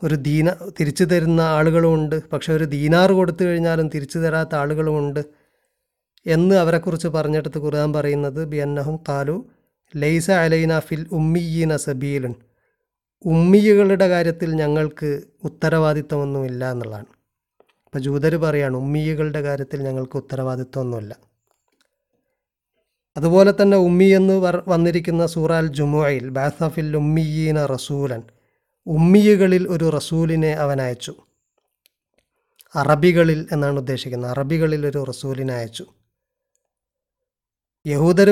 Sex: male